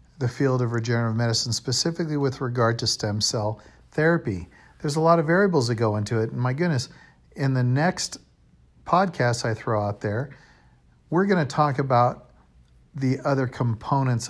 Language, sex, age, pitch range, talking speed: English, male, 50-69, 110-140 Hz, 165 wpm